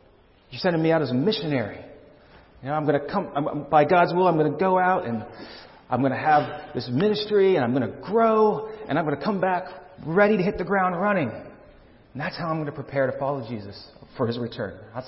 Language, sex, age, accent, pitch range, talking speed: English, male, 40-59, American, 135-180 Hz, 240 wpm